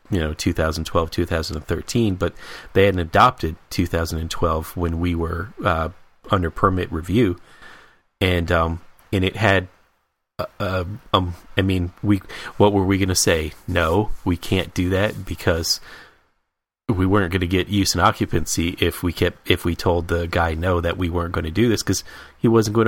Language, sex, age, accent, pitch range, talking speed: English, male, 30-49, American, 85-100 Hz, 175 wpm